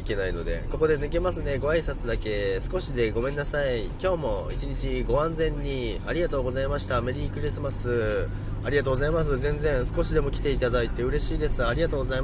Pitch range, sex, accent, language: 90-130 Hz, male, native, Japanese